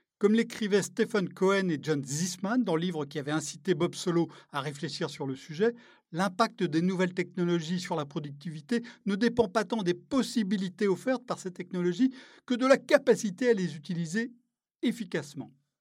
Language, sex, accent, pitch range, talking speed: French, male, French, 165-230 Hz, 170 wpm